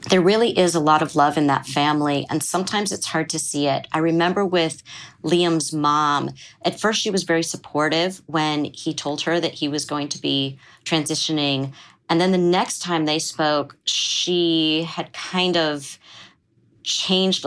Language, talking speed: English, 175 wpm